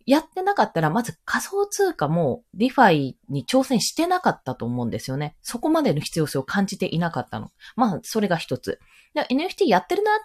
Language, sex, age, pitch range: Japanese, female, 20-39, 170-280 Hz